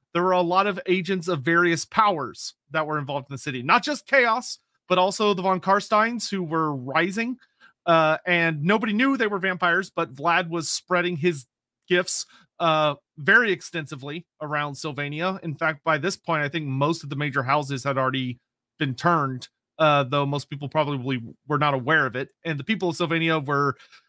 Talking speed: 190 wpm